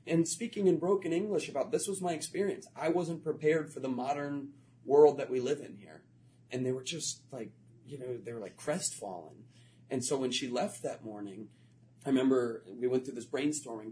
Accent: American